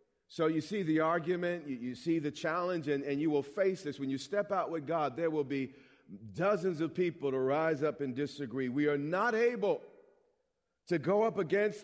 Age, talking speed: 40-59, 210 wpm